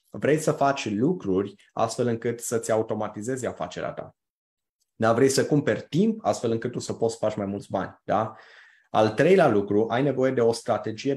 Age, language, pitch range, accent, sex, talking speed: 20-39, Romanian, 110-130 Hz, native, male, 185 wpm